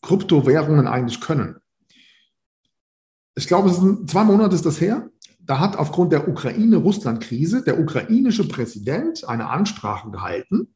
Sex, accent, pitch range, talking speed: male, German, 130-190 Hz, 130 wpm